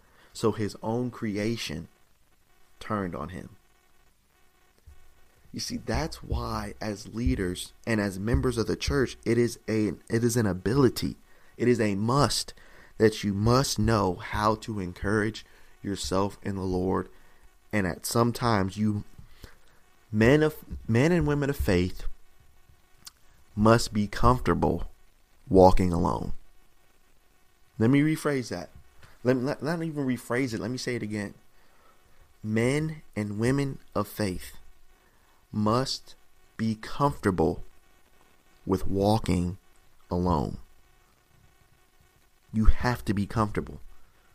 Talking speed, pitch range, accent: 125 wpm, 95-120 Hz, American